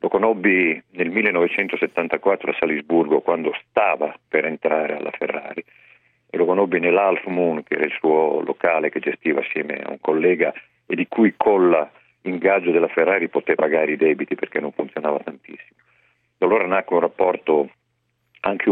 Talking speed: 155 wpm